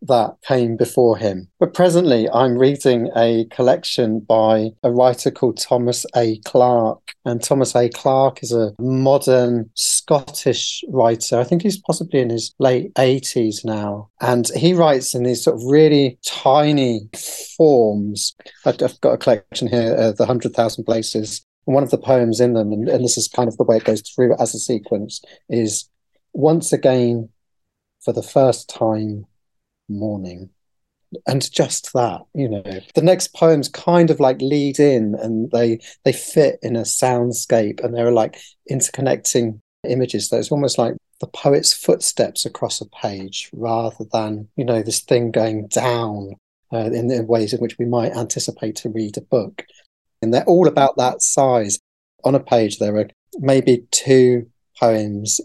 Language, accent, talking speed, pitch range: English, British, 165 wpm, 110-130 Hz